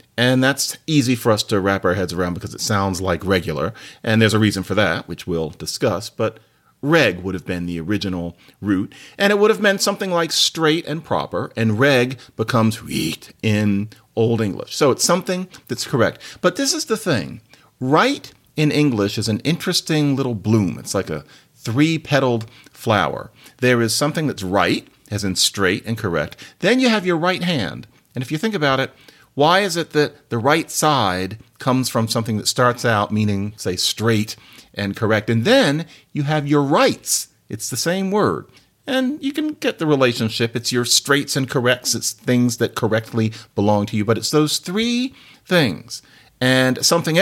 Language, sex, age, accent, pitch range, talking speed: English, male, 40-59, American, 110-150 Hz, 185 wpm